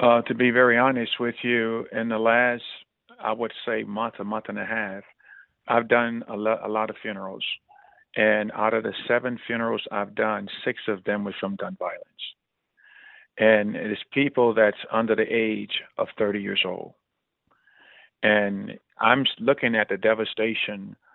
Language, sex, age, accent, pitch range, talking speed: English, male, 50-69, American, 105-120 Hz, 165 wpm